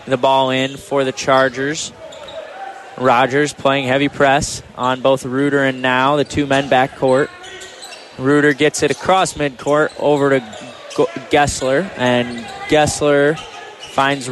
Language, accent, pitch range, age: English, American, 135-165 Hz, 20-39